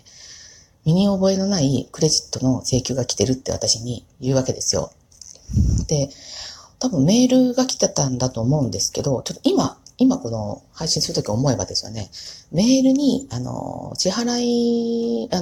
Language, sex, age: Japanese, female, 40-59